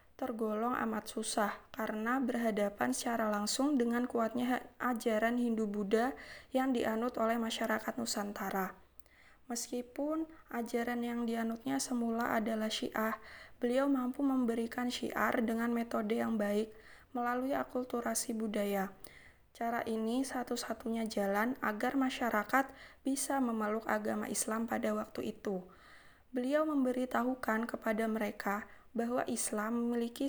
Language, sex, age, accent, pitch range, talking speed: Indonesian, female, 20-39, native, 220-250 Hz, 105 wpm